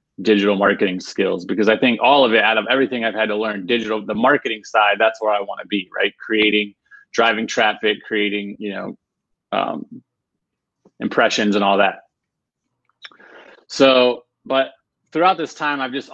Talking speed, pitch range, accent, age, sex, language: 165 wpm, 105-120 Hz, American, 30-49, male, English